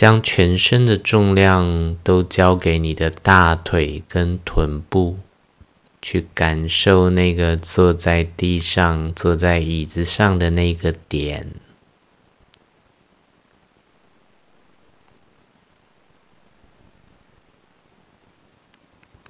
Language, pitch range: Chinese, 85-100 Hz